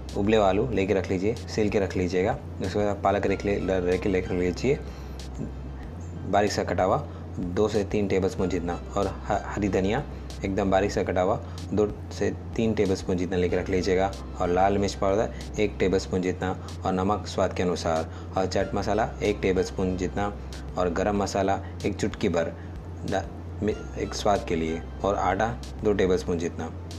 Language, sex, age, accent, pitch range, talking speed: Hindi, male, 20-39, native, 85-105 Hz, 180 wpm